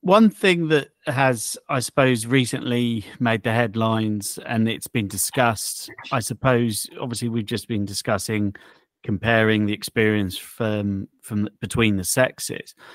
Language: English